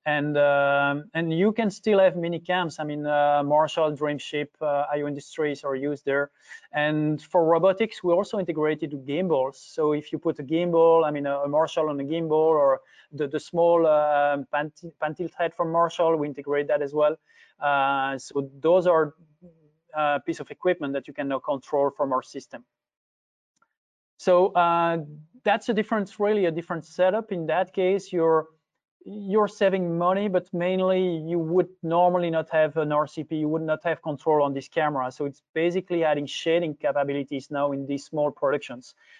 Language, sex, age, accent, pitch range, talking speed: English, male, 20-39, French, 145-170 Hz, 175 wpm